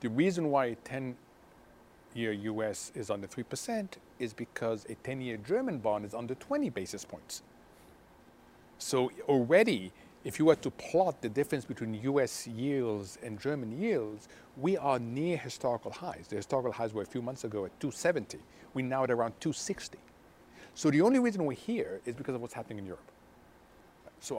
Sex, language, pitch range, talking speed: male, English, 115-150 Hz, 175 wpm